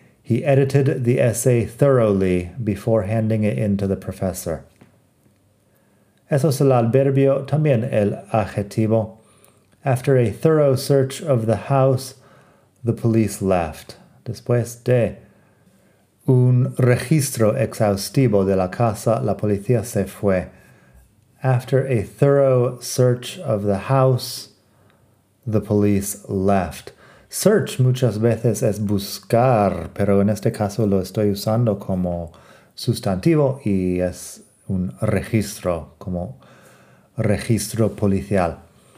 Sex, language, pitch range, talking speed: male, Spanish, 100-130 Hz, 110 wpm